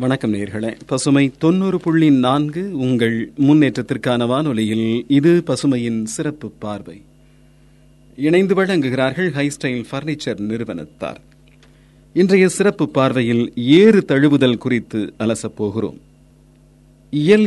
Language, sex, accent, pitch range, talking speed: Tamil, male, native, 110-155 Hz, 80 wpm